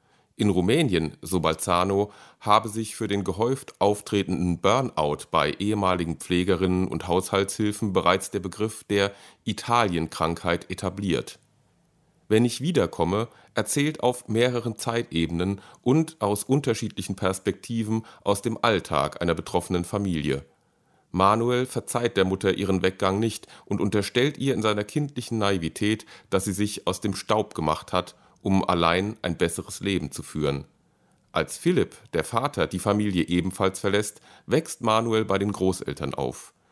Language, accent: German, German